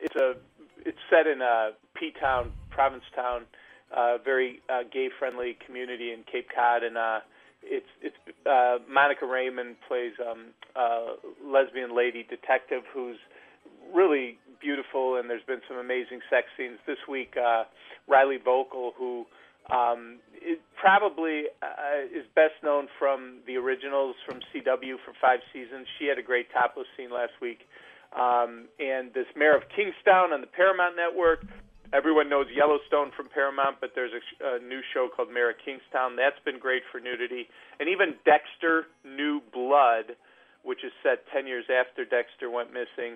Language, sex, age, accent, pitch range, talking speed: English, male, 40-59, American, 120-145 Hz, 160 wpm